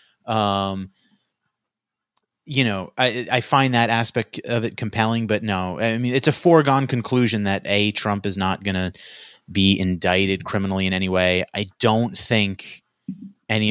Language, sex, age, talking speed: English, male, 30-49, 160 wpm